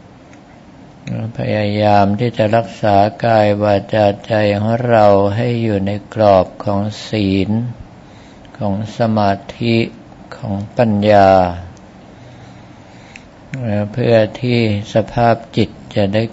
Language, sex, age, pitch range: Thai, male, 60-79, 100-110 Hz